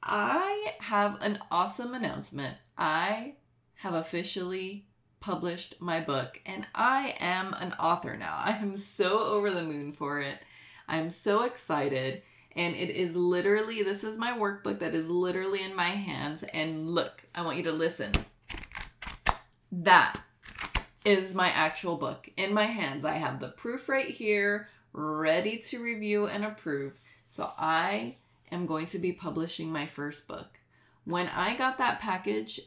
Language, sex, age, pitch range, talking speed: English, female, 20-39, 150-200 Hz, 155 wpm